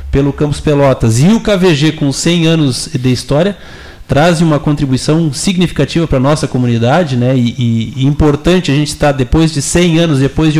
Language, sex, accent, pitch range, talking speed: Portuguese, male, Brazilian, 135-165 Hz, 180 wpm